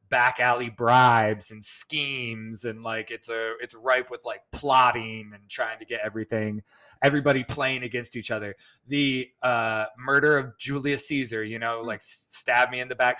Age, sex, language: 20-39, male, English